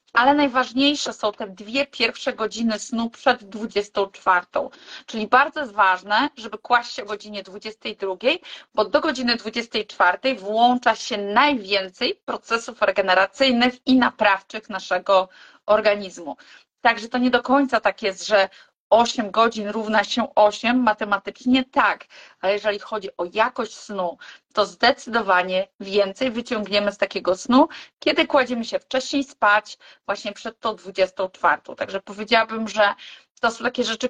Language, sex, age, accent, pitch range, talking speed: Polish, female, 30-49, native, 205-250 Hz, 135 wpm